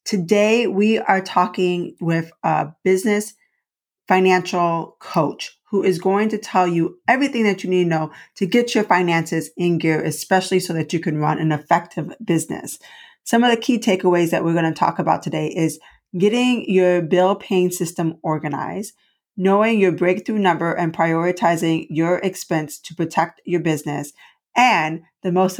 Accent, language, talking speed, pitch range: American, English, 165 wpm, 165-210 Hz